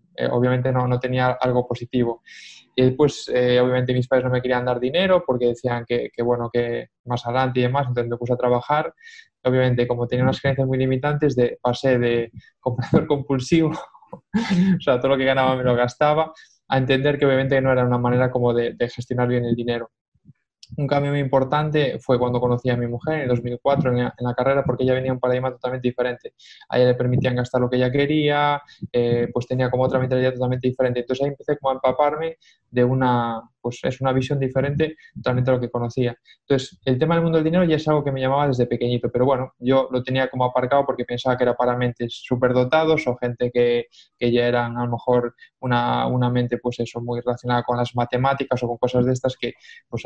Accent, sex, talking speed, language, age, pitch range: Spanish, male, 225 wpm, Spanish, 20-39, 120-135 Hz